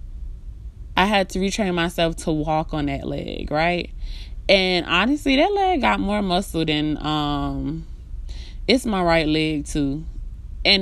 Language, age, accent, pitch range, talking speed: English, 20-39, American, 150-180 Hz, 145 wpm